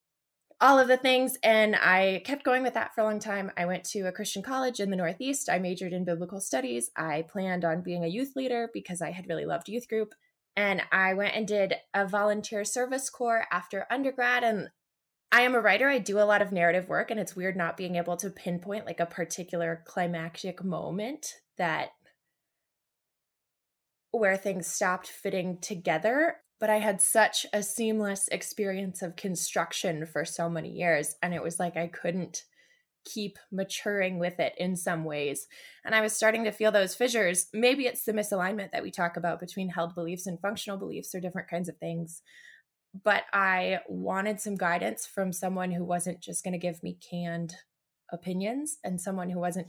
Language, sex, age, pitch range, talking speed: English, female, 20-39, 175-215 Hz, 190 wpm